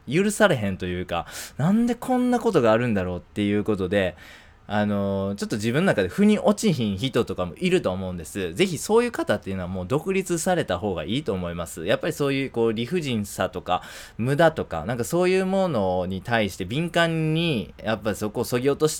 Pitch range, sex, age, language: 95-145 Hz, male, 20-39, Japanese